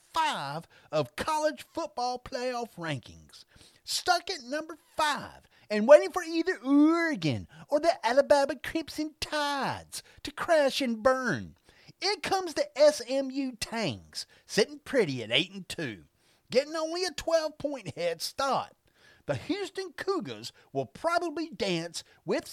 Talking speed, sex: 130 wpm, male